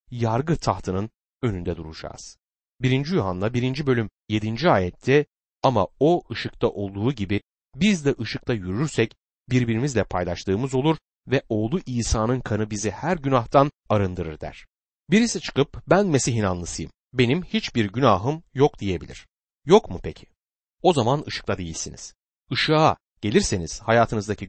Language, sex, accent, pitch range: Turkish, male, native, 95-140 Hz